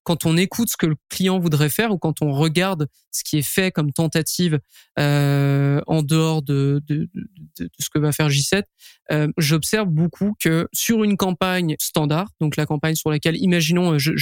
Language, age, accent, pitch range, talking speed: French, 20-39, French, 155-175 Hz, 195 wpm